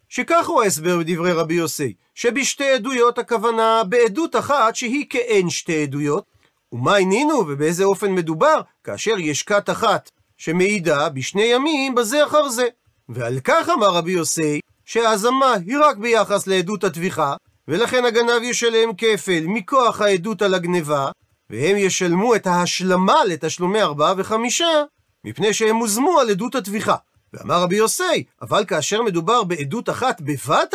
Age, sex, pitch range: 40-59, male, 170-235 Hz